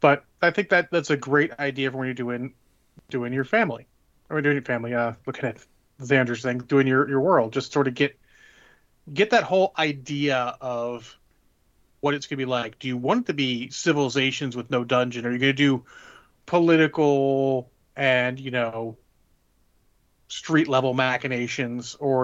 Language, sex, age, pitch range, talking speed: English, male, 30-49, 125-155 Hz, 175 wpm